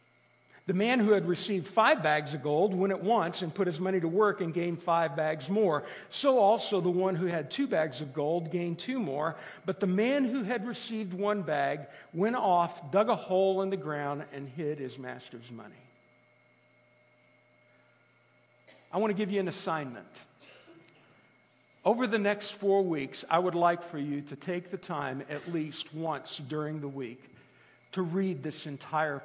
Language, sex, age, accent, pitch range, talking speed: English, male, 50-69, American, 130-180 Hz, 180 wpm